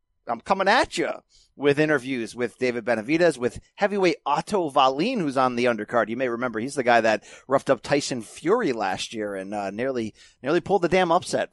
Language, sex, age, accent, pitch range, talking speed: English, male, 40-59, American, 120-165 Hz, 200 wpm